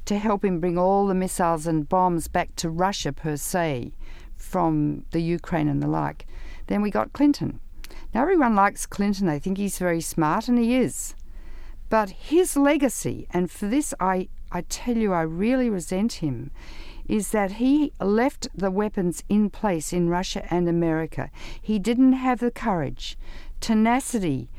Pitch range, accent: 170-250 Hz, Australian